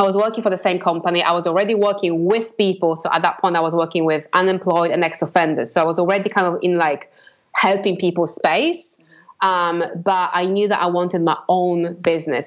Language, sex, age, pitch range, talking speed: English, female, 20-39, 165-200 Hz, 215 wpm